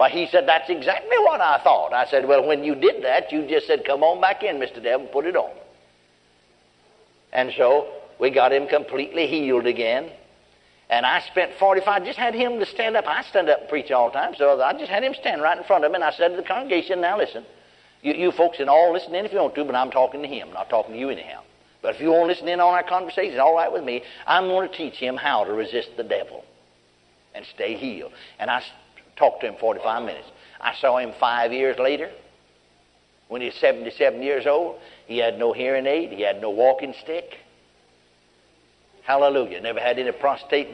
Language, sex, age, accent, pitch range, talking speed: English, male, 60-79, American, 135-185 Hz, 225 wpm